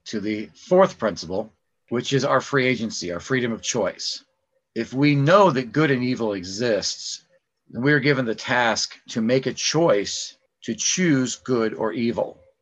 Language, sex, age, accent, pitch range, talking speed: English, male, 40-59, American, 110-145 Hz, 165 wpm